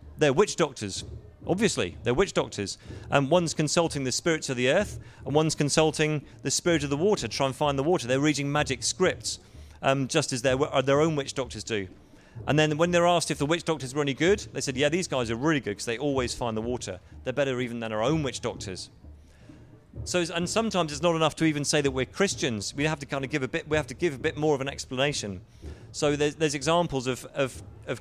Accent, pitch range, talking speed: British, 120-155 Hz, 245 wpm